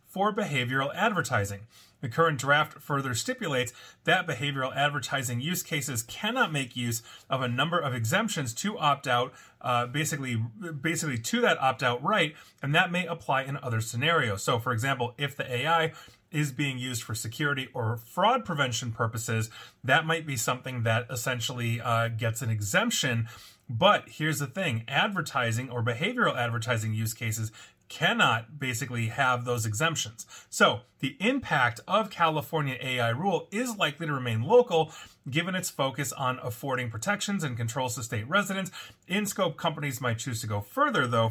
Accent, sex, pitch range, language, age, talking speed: American, male, 115-155 Hz, English, 30-49, 160 wpm